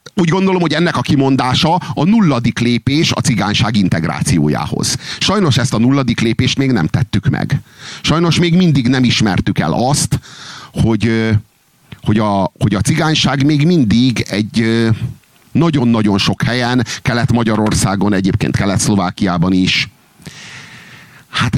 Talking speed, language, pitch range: 120 wpm, Hungarian, 105-140 Hz